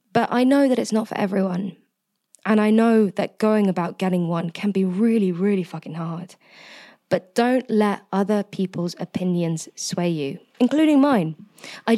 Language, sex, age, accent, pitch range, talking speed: English, female, 20-39, British, 175-210 Hz, 165 wpm